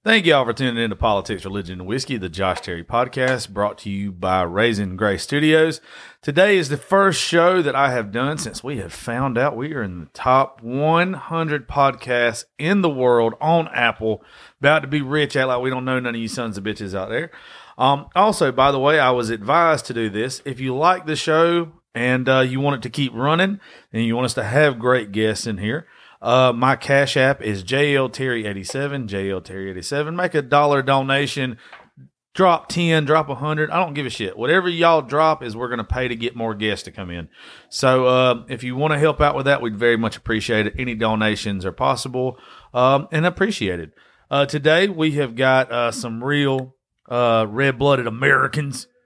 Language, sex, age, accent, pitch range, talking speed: English, male, 40-59, American, 115-150 Hz, 205 wpm